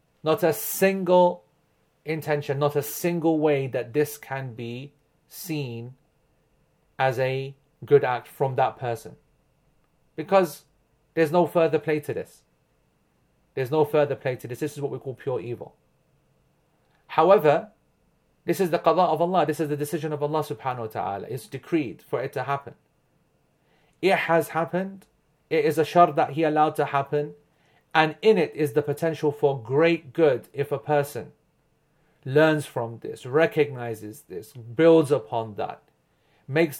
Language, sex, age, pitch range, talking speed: English, male, 40-59, 135-160 Hz, 155 wpm